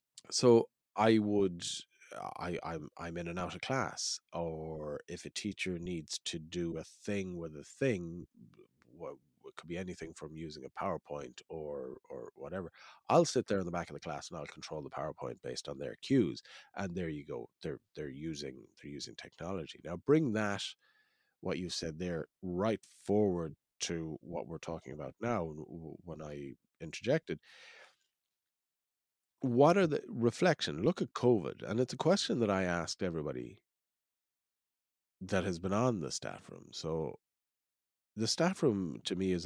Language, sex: English, male